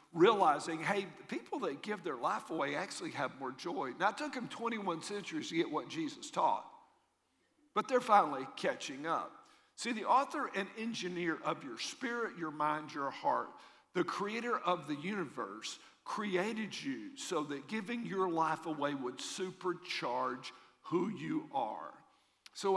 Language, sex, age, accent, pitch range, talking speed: English, male, 50-69, American, 175-275 Hz, 160 wpm